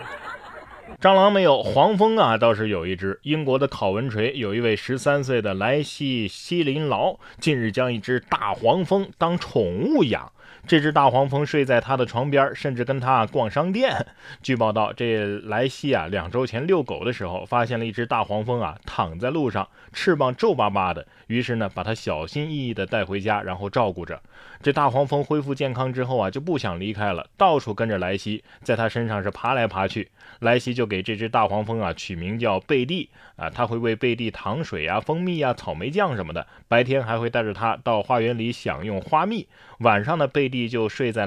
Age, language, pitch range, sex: 20-39, Chinese, 100-135 Hz, male